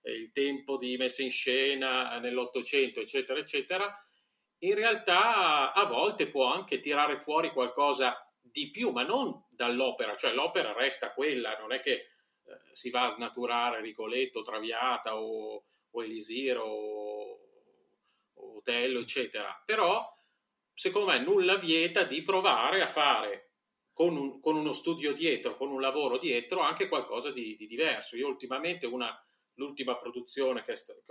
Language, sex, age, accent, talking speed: Italian, male, 40-59, native, 145 wpm